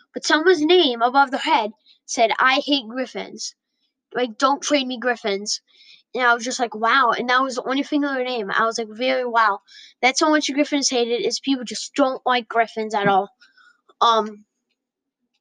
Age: 10-29